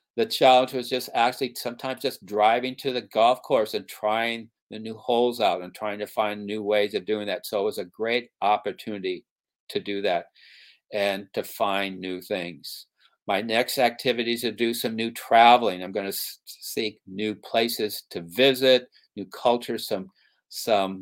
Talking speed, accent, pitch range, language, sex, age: 175 wpm, American, 100-130 Hz, English, male, 60-79